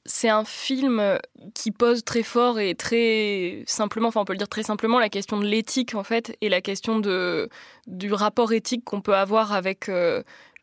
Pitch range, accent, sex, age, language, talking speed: 205-235 Hz, French, female, 20-39, French, 200 wpm